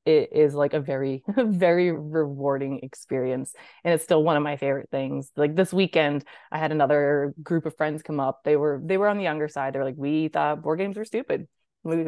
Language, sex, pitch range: English, female, 145-175 Hz